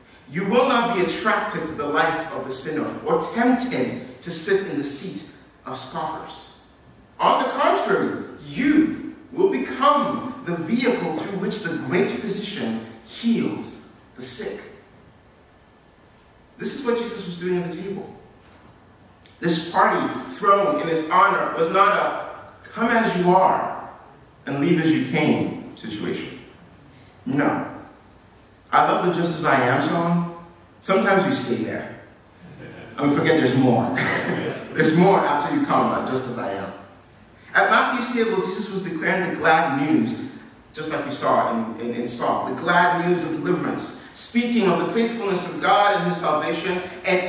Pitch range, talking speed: 150-215 Hz, 160 wpm